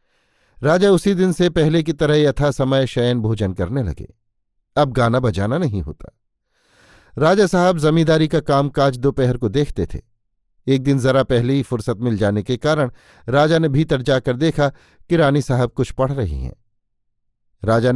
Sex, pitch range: male, 115-155 Hz